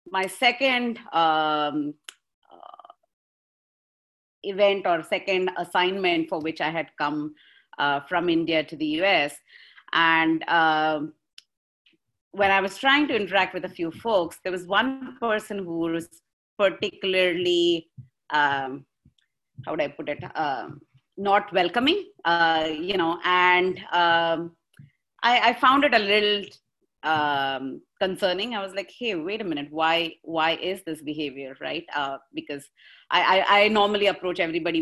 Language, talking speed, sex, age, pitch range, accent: English, 140 wpm, female, 30-49, 160-200 Hz, Indian